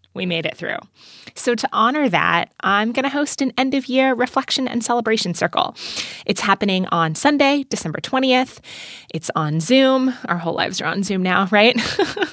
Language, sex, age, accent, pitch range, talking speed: English, female, 20-39, American, 170-245 Hz, 180 wpm